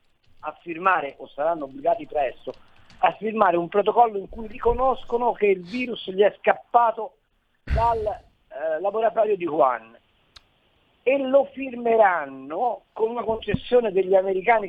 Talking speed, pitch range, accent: 130 wpm, 170-250 Hz, native